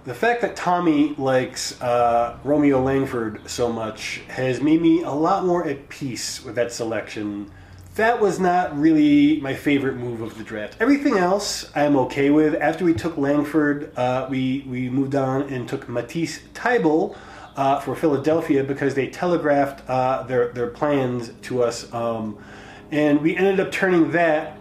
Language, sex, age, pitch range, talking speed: English, male, 30-49, 125-155 Hz, 165 wpm